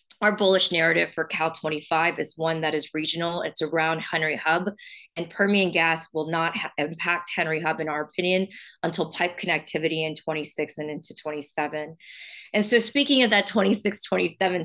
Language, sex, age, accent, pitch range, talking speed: English, female, 30-49, American, 160-180 Hz, 170 wpm